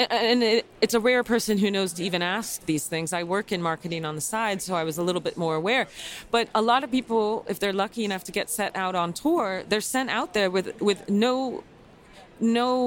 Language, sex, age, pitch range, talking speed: English, female, 30-49, 180-225 Hz, 235 wpm